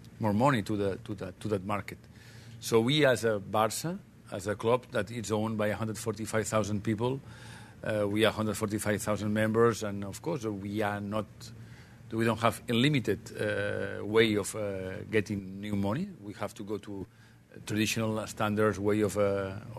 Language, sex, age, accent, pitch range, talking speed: English, male, 50-69, Spanish, 105-115 Hz, 170 wpm